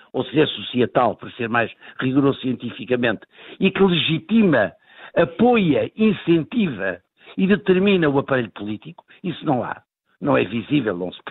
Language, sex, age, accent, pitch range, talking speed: Portuguese, male, 60-79, Portuguese, 125-180 Hz, 135 wpm